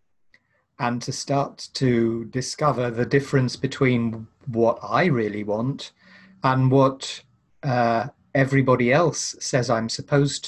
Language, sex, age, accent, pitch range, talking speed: English, male, 40-59, British, 115-135 Hz, 115 wpm